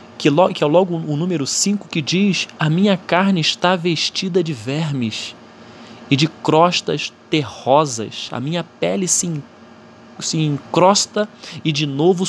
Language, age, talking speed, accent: Portuguese, 20-39, 130 wpm, Brazilian